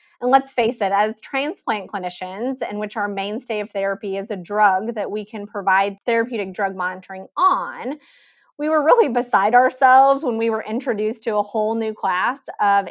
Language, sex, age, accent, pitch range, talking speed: English, female, 30-49, American, 195-245 Hz, 180 wpm